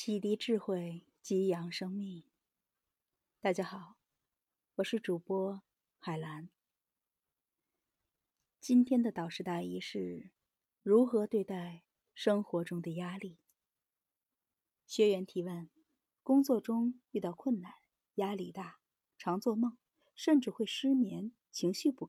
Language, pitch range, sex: Chinese, 180-240 Hz, female